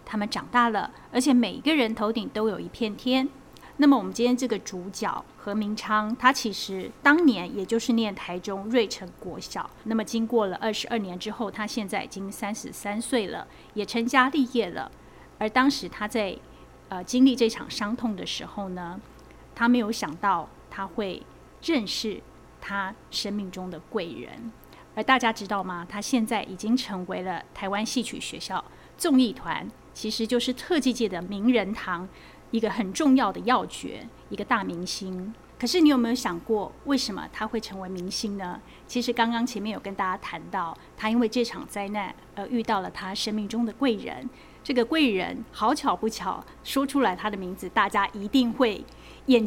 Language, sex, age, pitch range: Chinese, female, 30-49, 200-245 Hz